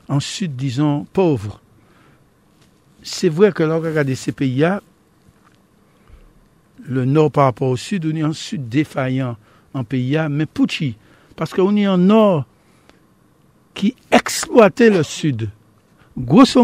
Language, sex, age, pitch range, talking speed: French, male, 60-79, 130-190 Hz, 135 wpm